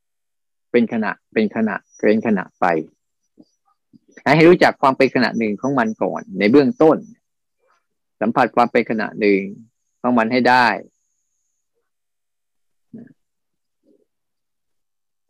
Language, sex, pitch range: Thai, male, 110-145 Hz